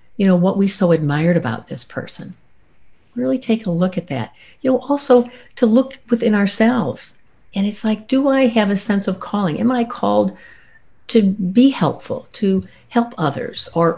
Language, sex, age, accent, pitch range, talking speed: English, female, 60-79, American, 175-235 Hz, 180 wpm